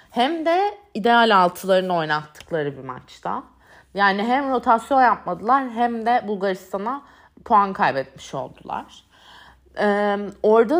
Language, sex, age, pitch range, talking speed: Turkish, female, 30-49, 205-270 Hz, 105 wpm